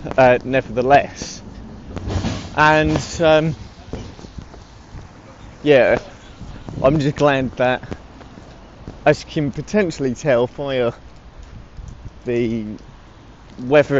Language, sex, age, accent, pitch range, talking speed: English, male, 20-39, British, 105-145 Hz, 75 wpm